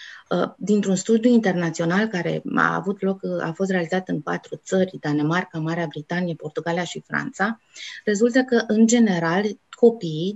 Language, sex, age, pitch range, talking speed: Romanian, female, 20-39, 180-220 Hz, 140 wpm